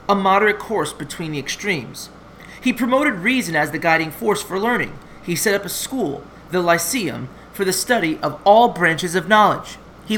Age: 30-49